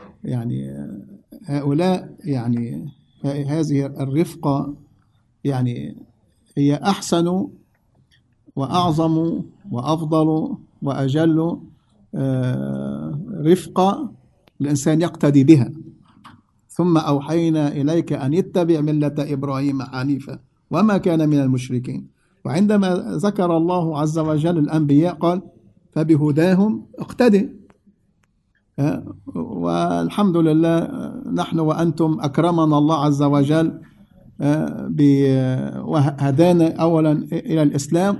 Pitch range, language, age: 140-175 Hz, English, 50-69